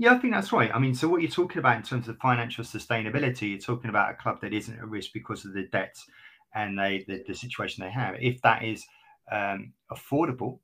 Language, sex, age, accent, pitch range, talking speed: English, male, 30-49, British, 95-120 Hz, 235 wpm